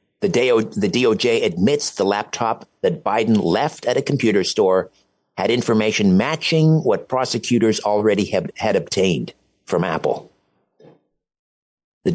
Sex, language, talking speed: male, English, 120 wpm